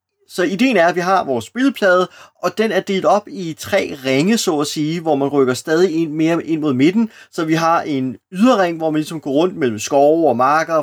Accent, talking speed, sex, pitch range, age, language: native, 220 wpm, male, 140-190 Hz, 30-49, Danish